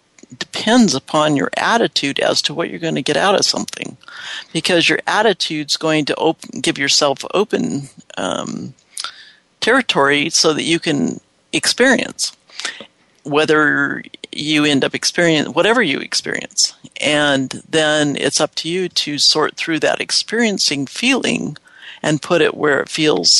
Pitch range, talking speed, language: 140-170 Hz, 145 wpm, English